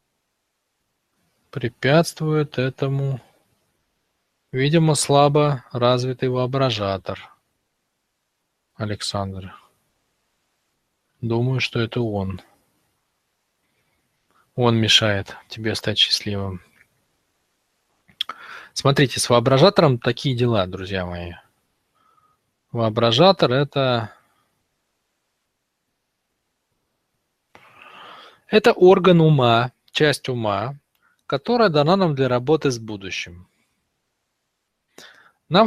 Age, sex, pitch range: 20-39, male, 115-160 Hz